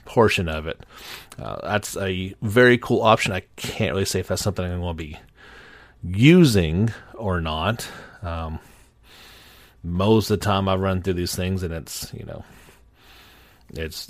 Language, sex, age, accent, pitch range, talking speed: English, male, 30-49, American, 90-115 Hz, 160 wpm